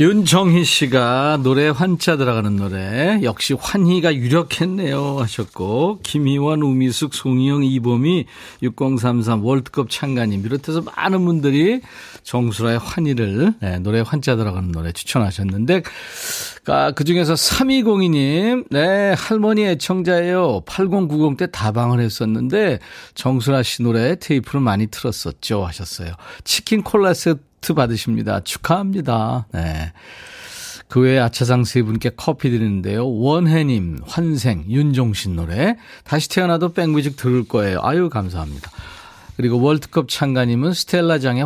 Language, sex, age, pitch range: Korean, male, 40-59, 115-170 Hz